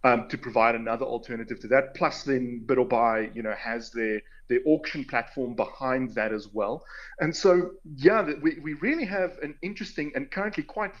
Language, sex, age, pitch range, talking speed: English, male, 30-49, 120-160 Hz, 190 wpm